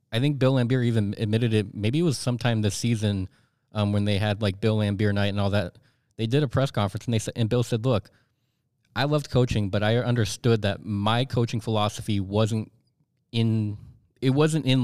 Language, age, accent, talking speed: English, 20-39, American, 205 wpm